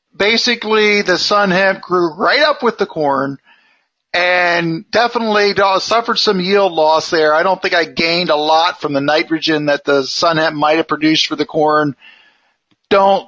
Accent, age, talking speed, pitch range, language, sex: American, 40-59, 170 wpm, 155-200 Hz, English, male